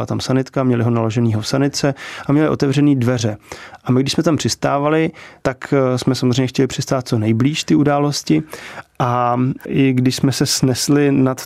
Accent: native